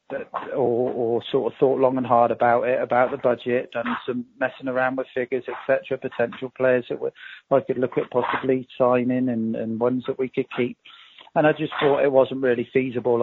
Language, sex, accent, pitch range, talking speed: English, male, British, 120-135 Hz, 210 wpm